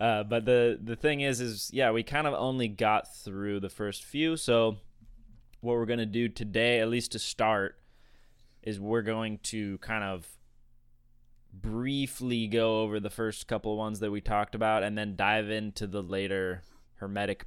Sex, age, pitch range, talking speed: male, 20-39, 100-120 Hz, 180 wpm